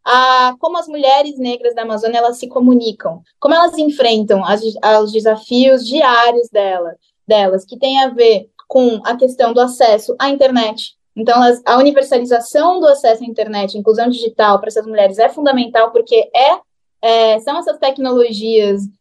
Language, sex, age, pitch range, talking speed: Portuguese, female, 20-39, 220-275 Hz, 160 wpm